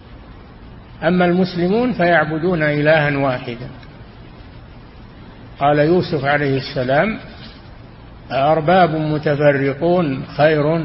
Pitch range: 130-160 Hz